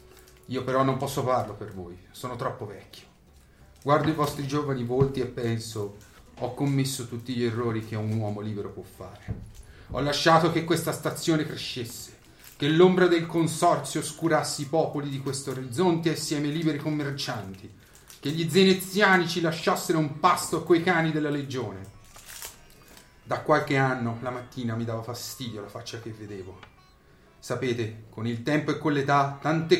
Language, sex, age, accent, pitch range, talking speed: Italian, male, 30-49, native, 115-150 Hz, 160 wpm